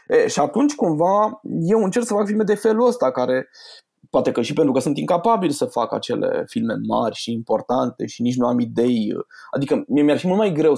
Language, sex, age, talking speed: Romanian, male, 20-39, 210 wpm